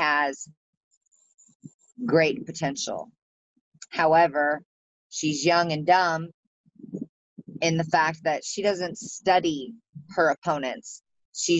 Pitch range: 150-180 Hz